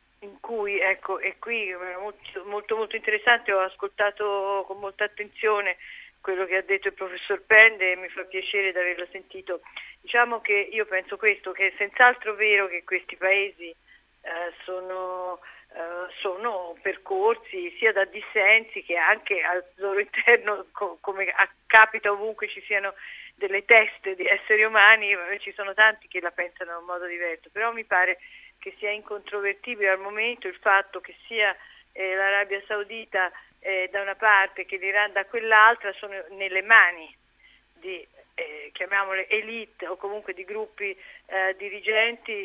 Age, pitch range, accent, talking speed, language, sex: 40-59, 190-220 Hz, native, 155 wpm, Italian, female